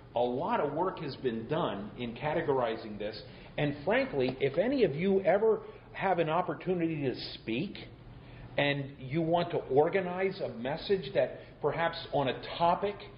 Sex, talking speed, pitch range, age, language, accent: male, 155 wpm, 130-185 Hz, 50-69, Italian, American